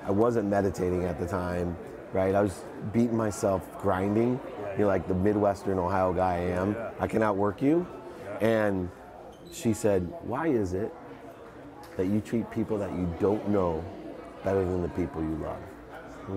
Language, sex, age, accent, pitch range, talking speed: English, male, 30-49, American, 90-110 Hz, 165 wpm